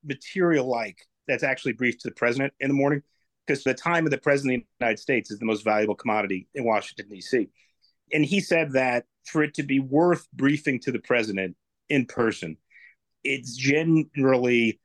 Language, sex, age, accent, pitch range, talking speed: English, male, 40-59, American, 110-140 Hz, 180 wpm